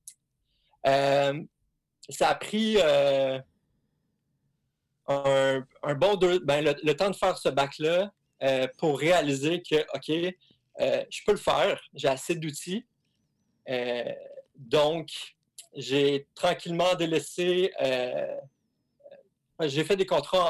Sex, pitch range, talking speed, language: male, 135-180 Hz, 115 wpm, French